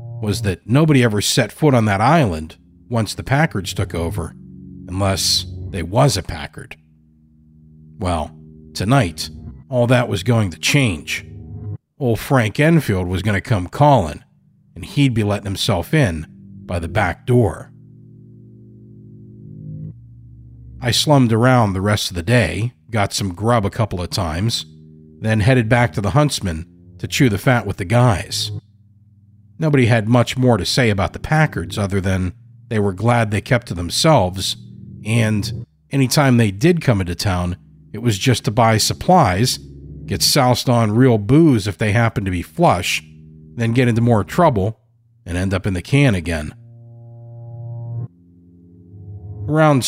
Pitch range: 90-125 Hz